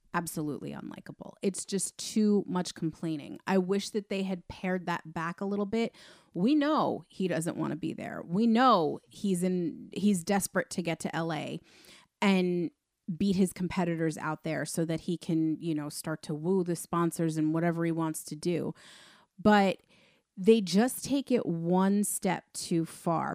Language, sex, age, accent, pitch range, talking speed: English, female, 30-49, American, 165-200 Hz, 175 wpm